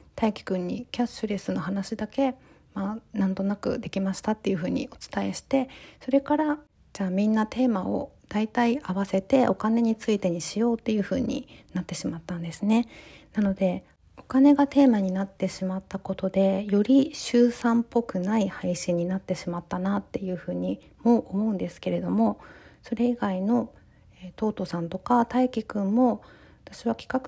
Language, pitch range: Japanese, 190-245 Hz